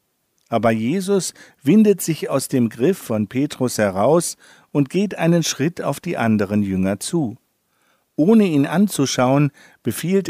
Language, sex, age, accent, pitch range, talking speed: German, male, 50-69, German, 125-175 Hz, 135 wpm